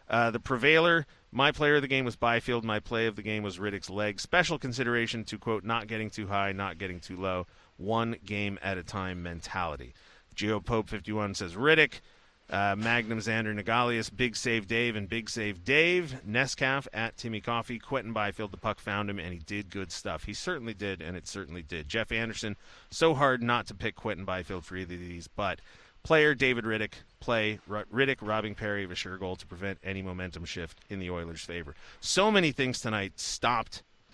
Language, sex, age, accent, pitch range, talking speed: English, male, 30-49, American, 95-125 Hz, 195 wpm